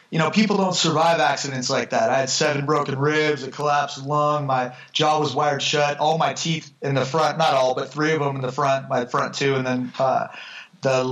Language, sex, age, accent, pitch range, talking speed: English, male, 30-49, American, 130-155 Hz, 230 wpm